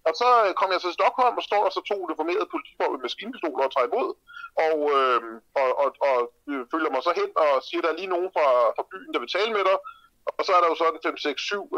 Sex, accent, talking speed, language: male, native, 265 wpm, Danish